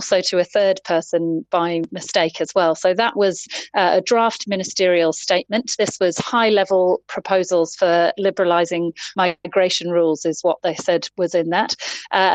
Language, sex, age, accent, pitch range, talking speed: English, female, 30-49, British, 170-200 Hz, 165 wpm